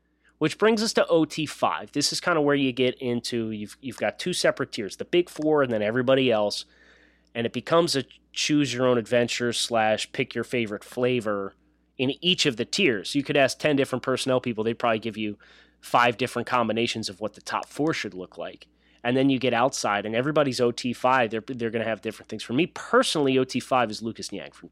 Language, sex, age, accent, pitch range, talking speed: English, male, 30-49, American, 110-135 Hz, 195 wpm